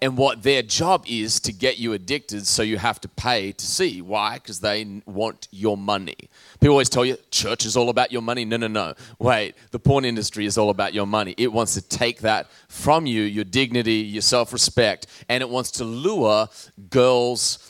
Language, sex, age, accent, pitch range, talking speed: English, male, 30-49, Australian, 110-130 Hz, 205 wpm